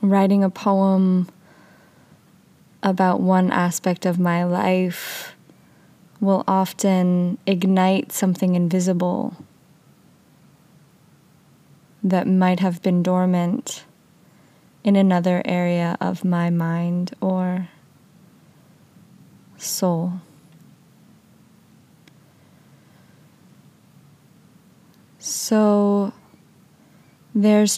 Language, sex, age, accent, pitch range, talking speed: English, female, 20-39, American, 175-200 Hz, 65 wpm